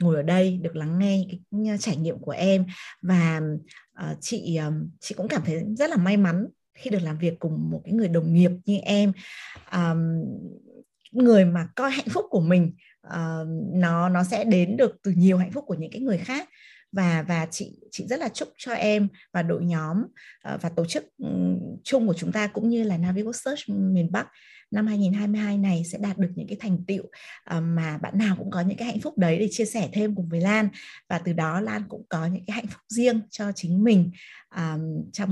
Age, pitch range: 20-39, 170-210 Hz